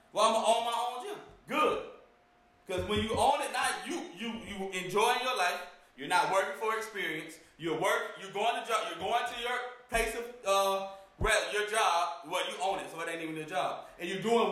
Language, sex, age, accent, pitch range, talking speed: English, male, 30-49, American, 185-225 Hz, 220 wpm